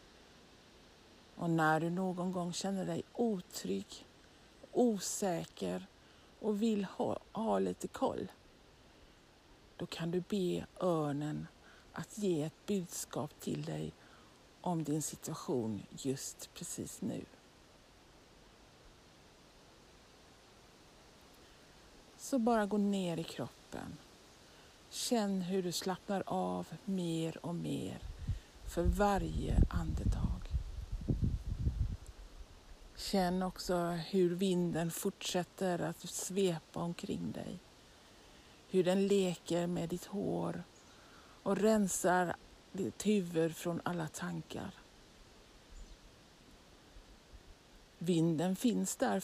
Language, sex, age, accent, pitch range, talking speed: Swedish, female, 60-79, native, 155-195 Hz, 90 wpm